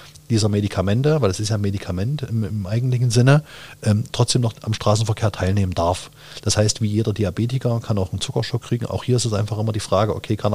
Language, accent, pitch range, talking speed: German, German, 100-115 Hz, 220 wpm